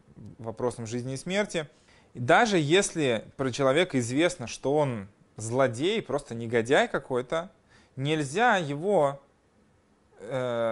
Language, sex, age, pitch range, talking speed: Russian, male, 20-39, 115-175 Hz, 105 wpm